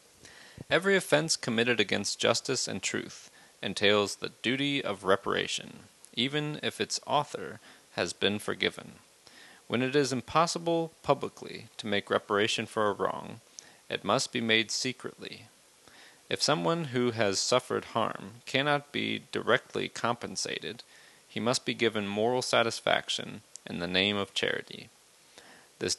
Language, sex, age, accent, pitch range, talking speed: English, male, 30-49, American, 100-135 Hz, 130 wpm